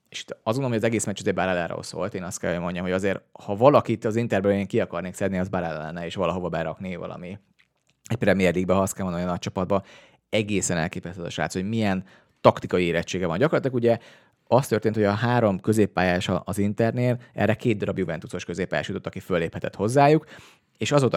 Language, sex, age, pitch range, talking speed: Hungarian, male, 30-49, 95-120 Hz, 210 wpm